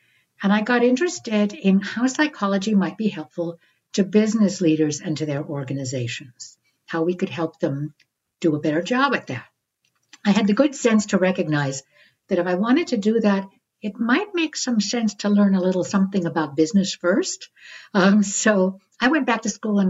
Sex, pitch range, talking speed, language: female, 165-205 Hz, 190 wpm, English